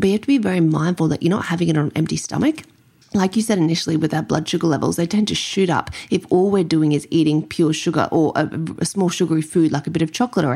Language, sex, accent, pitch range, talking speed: English, female, Australian, 160-180 Hz, 285 wpm